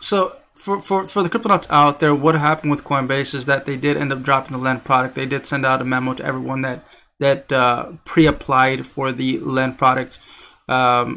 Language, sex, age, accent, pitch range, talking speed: English, male, 20-39, American, 130-160 Hz, 215 wpm